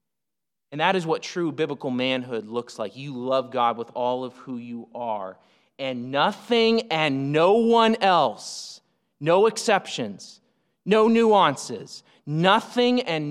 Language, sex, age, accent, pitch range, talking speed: English, male, 30-49, American, 155-210 Hz, 135 wpm